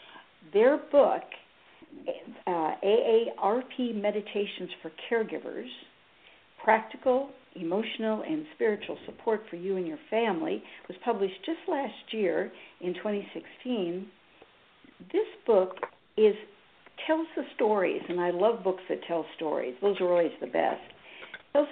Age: 60-79